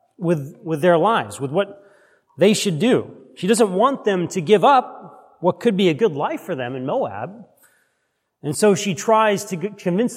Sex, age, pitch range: male, 40-59, 150-200 Hz